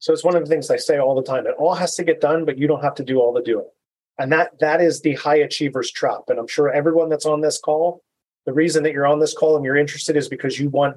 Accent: American